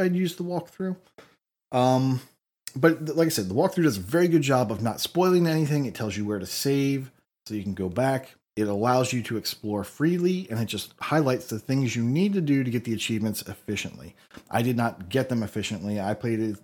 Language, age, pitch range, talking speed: English, 30-49, 105-145 Hz, 215 wpm